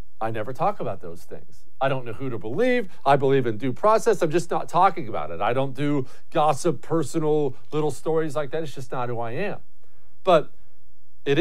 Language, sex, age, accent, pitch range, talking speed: English, male, 40-59, American, 145-220 Hz, 210 wpm